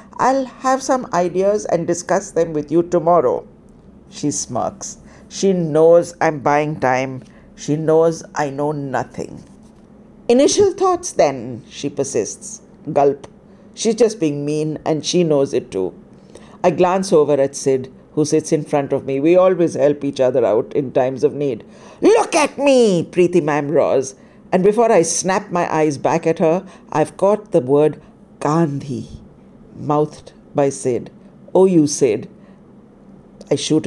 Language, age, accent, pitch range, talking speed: English, 50-69, Indian, 150-230 Hz, 150 wpm